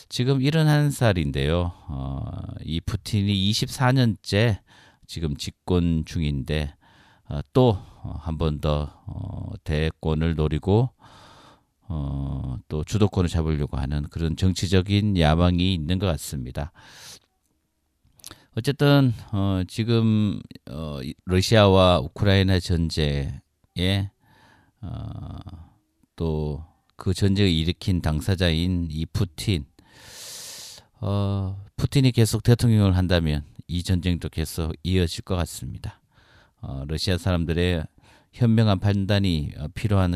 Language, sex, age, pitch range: Korean, male, 40-59, 80-105 Hz